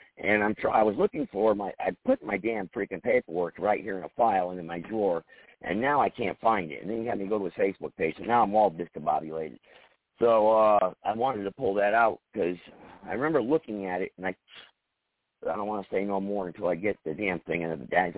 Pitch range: 90-130 Hz